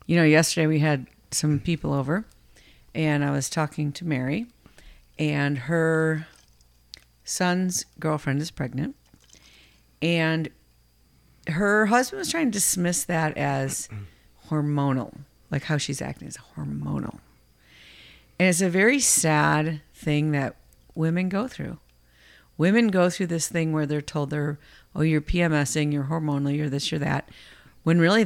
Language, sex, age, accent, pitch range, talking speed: English, female, 50-69, American, 140-175 Hz, 140 wpm